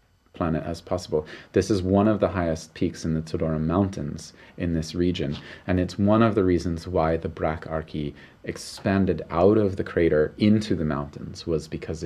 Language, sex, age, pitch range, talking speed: English, male, 30-49, 80-95 Hz, 180 wpm